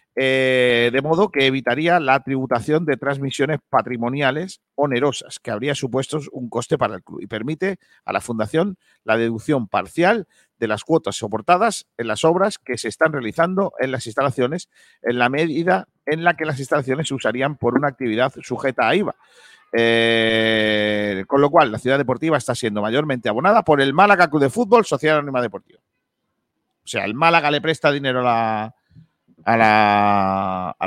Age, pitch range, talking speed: 50-69, 120-165 Hz, 170 wpm